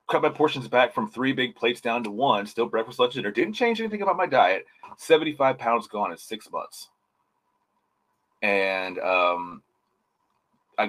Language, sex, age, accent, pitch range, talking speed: English, male, 30-49, American, 95-135 Hz, 165 wpm